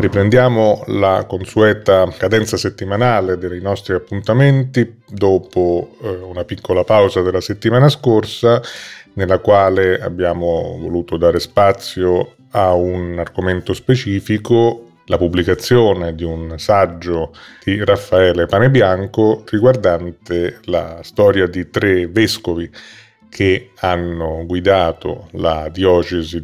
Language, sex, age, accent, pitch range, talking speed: Italian, male, 30-49, native, 85-110 Hz, 100 wpm